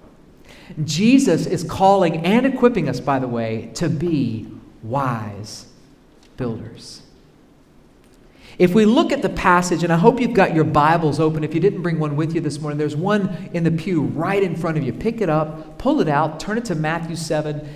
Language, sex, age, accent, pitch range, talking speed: English, male, 40-59, American, 150-195 Hz, 195 wpm